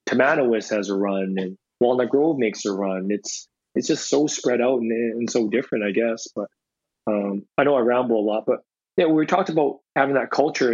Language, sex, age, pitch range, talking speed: English, male, 20-39, 110-130 Hz, 210 wpm